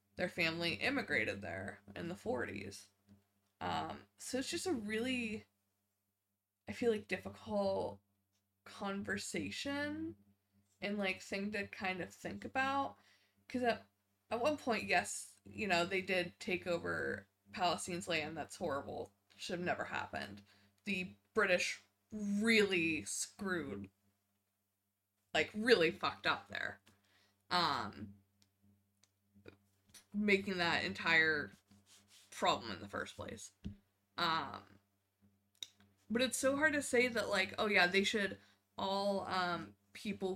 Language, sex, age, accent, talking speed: English, female, 20-39, American, 120 wpm